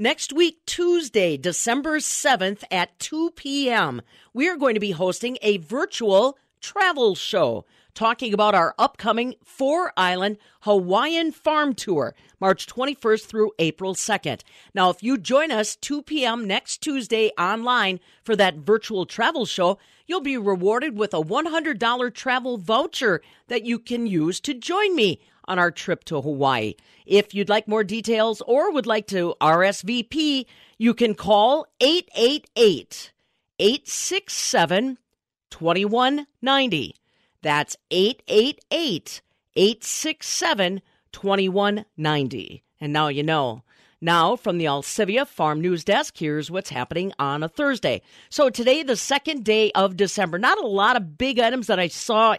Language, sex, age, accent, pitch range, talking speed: English, female, 50-69, American, 180-260 Hz, 135 wpm